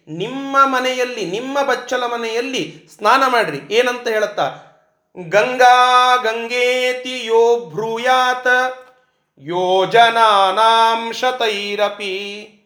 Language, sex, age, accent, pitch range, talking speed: Kannada, male, 30-49, native, 195-255 Hz, 70 wpm